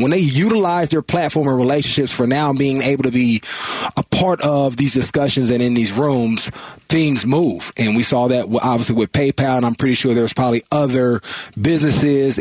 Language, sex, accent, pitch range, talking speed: English, male, American, 120-145 Hz, 190 wpm